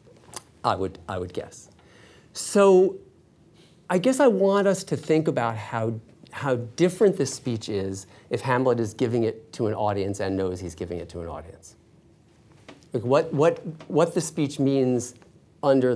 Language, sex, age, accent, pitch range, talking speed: English, male, 40-59, American, 105-145 Hz, 165 wpm